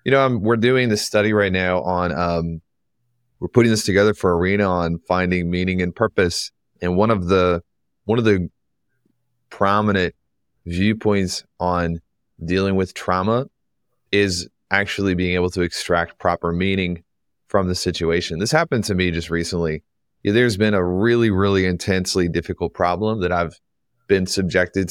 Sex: male